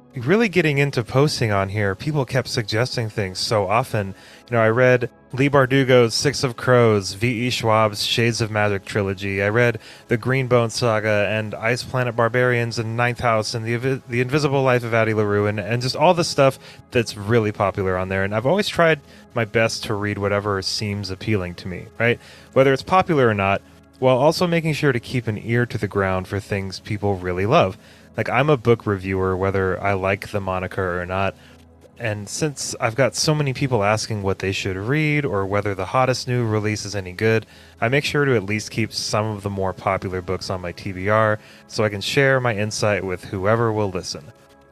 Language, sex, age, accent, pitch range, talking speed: English, male, 30-49, American, 100-125 Hz, 205 wpm